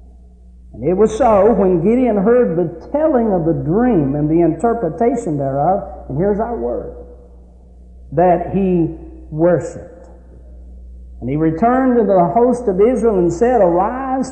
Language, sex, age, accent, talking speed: English, male, 60-79, American, 145 wpm